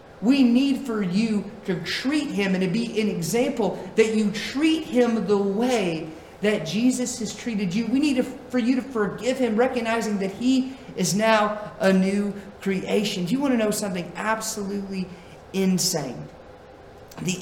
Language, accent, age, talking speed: English, American, 30-49, 160 wpm